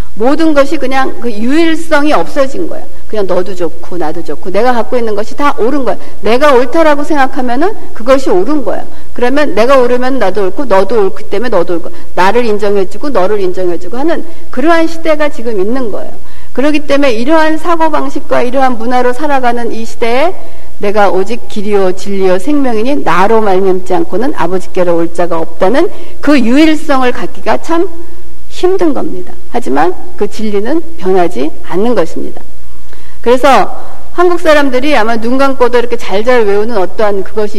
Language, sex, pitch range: Korean, female, 190-315 Hz